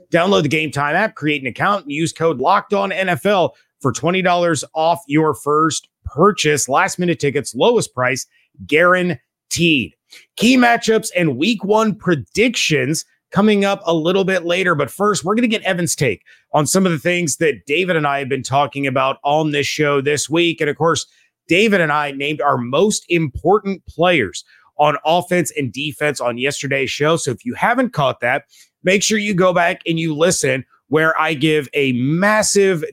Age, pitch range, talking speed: 30-49, 145-185 Hz, 180 wpm